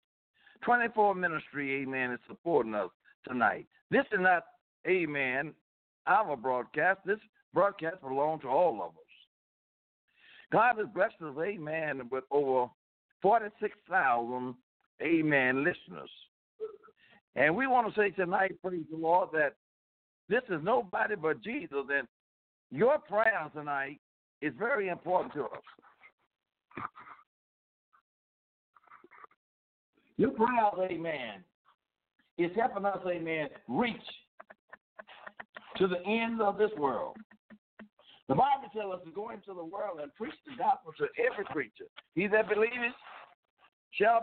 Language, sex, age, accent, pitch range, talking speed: English, male, 60-79, American, 150-220 Hz, 120 wpm